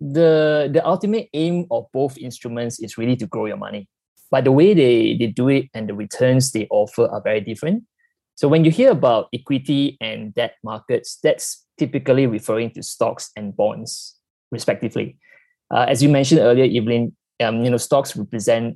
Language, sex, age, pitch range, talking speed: English, male, 20-39, 115-150 Hz, 175 wpm